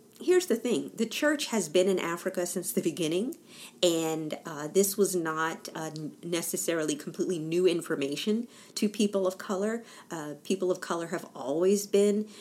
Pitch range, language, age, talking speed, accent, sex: 150-210 Hz, English, 40-59, 160 wpm, American, female